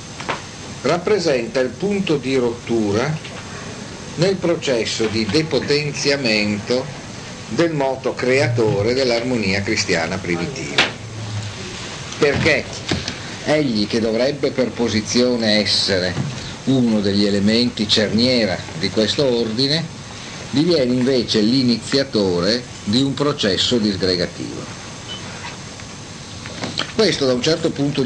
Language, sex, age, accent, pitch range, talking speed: Italian, male, 50-69, native, 105-135 Hz, 90 wpm